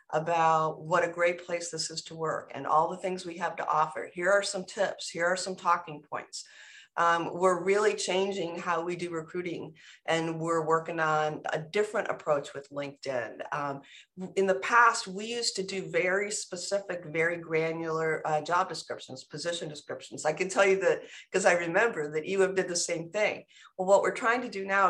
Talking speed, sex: 200 wpm, female